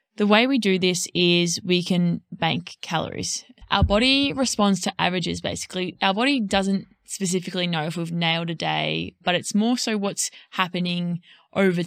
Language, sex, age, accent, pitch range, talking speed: English, female, 20-39, Australian, 180-220 Hz, 165 wpm